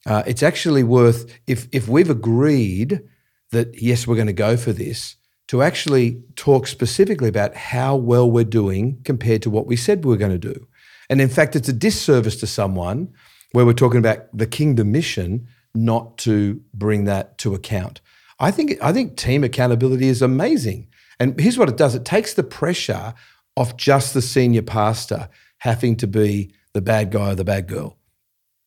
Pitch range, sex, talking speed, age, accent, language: 110-135 Hz, male, 185 wpm, 50-69, Australian, English